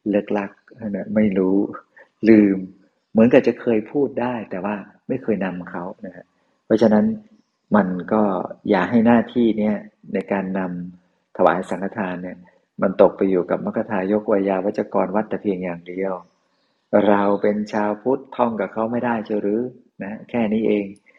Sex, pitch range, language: male, 95-110 Hz, Thai